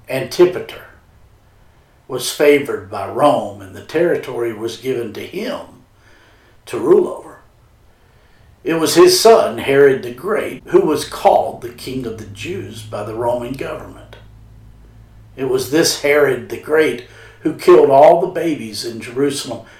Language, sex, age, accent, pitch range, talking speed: English, male, 50-69, American, 115-150 Hz, 140 wpm